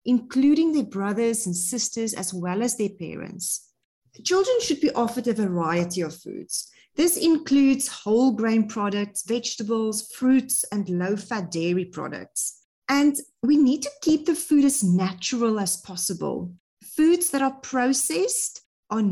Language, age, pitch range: English, 40-59, 205-275 Hz